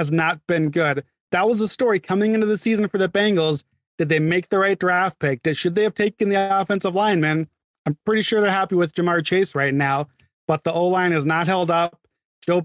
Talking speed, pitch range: 230 wpm, 160-190 Hz